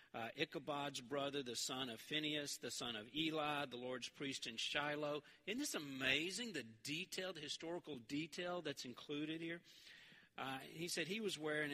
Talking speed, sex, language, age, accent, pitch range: 165 wpm, male, English, 50-69, American, 145-175 Hz